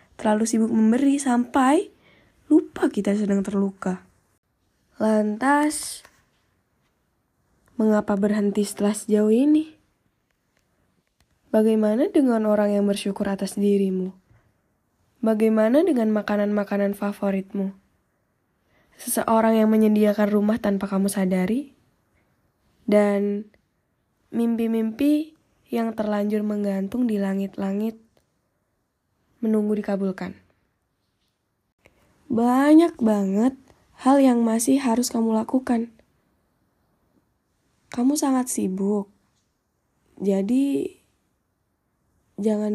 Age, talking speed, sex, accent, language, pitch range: 10-29, 75 wpm, female, native, Indonesian, 200-235 Hz